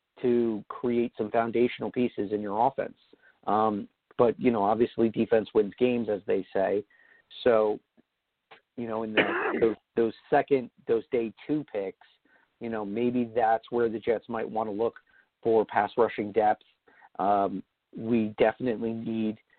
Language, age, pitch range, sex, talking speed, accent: English, 50-69, 105-120 Hz, male, 150 wpm, American